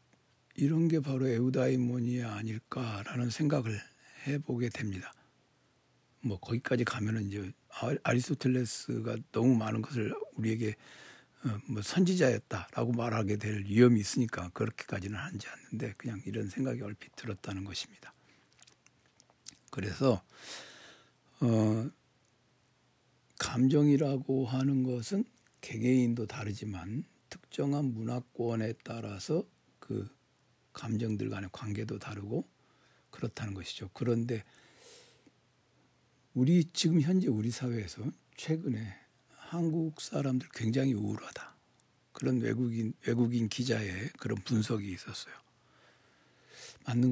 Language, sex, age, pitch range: Korean, male, 60-79, 110-130 Hz